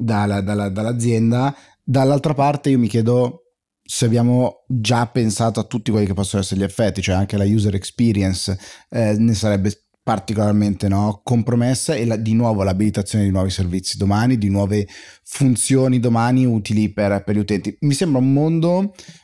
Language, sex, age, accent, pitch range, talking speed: Italian, male, 30-49, native, 100-125 Hz, 155 wpm